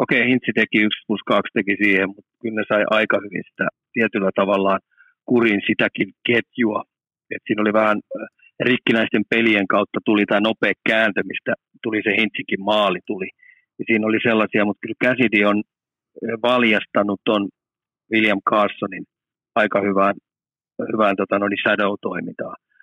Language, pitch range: Finnish, 100-115 Hz